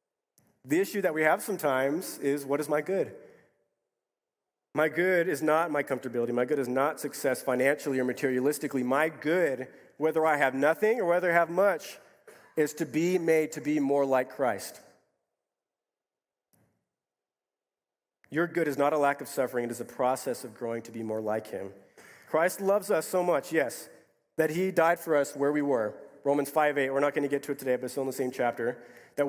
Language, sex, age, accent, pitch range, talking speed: English, male, 40-59, American, 140-170 Hz, 200 wpm